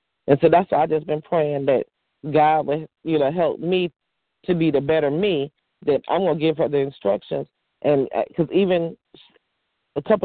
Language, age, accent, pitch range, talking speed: English, 40-59, American, 135-165 Hz, 200 wpm